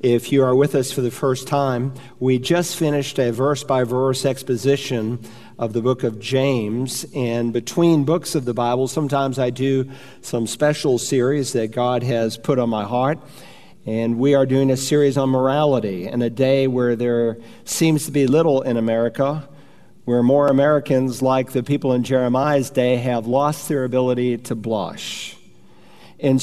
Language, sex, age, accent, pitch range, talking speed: English, male, 50-69, American, 125-140 Hz, 170 wpm